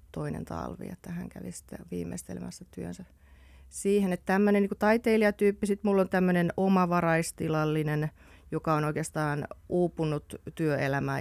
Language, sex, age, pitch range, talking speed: Finnish, female, 30-49, 140-170 Hz, 125 wpm